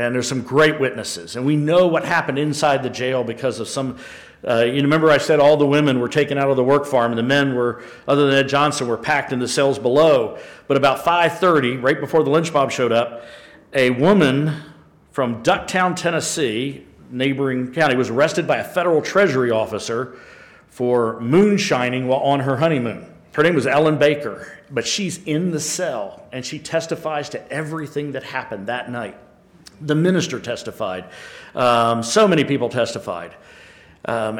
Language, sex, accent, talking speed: English, male, American, 180 wpm